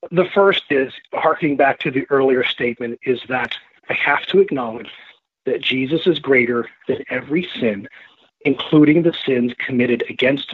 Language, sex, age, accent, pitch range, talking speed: English, male, 40-59, American, 130-165 Hz, 155 wpm